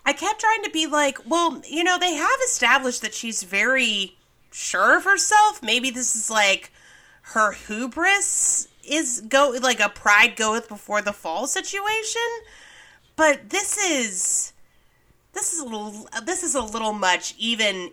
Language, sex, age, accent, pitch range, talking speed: English, female, 30-49, American, 195-280 Hz, 155 wpm